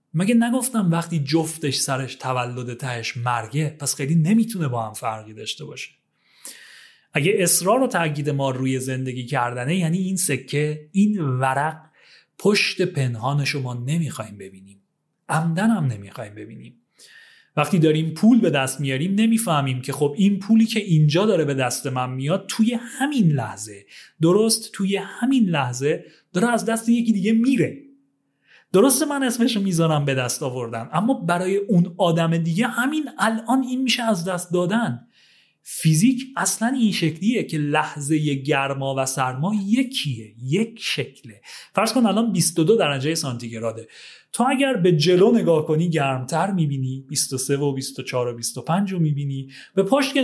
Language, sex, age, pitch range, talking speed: Persian, male, 30-49, 135-220 Hz, 150 wpm